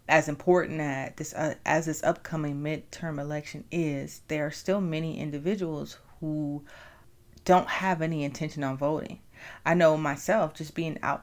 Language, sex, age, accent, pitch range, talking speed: English, female, 30-49, American, 150-180 Hz, 155 wpm